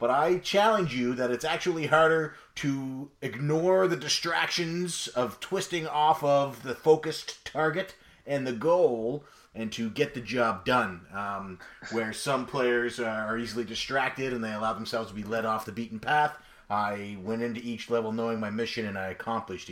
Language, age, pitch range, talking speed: English, 30-49, 115-150 Hz, 175 wpm